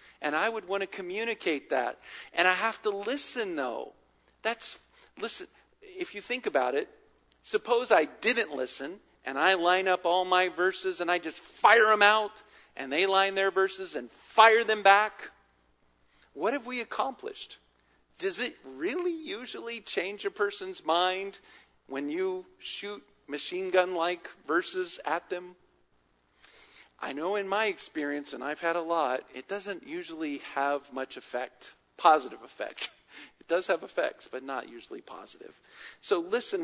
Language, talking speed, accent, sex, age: English, 155 wpm, American, male, 50-69